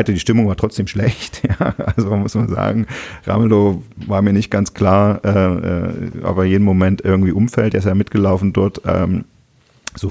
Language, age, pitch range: German, 40-59, 90-105 Hz